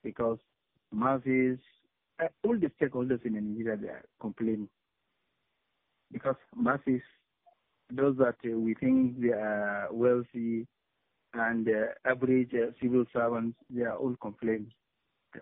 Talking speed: 110 wpm